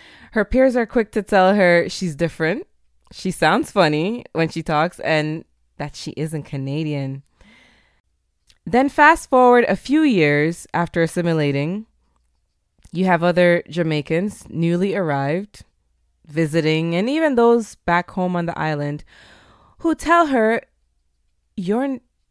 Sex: female